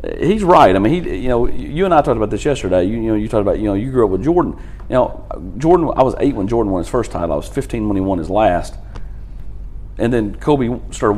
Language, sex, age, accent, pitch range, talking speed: English, male, 40-59, American, 95-115 Hz, 275 wpm